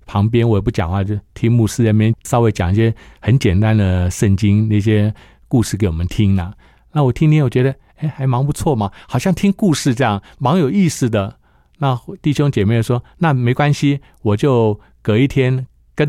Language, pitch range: Chinese, 105-145 Hz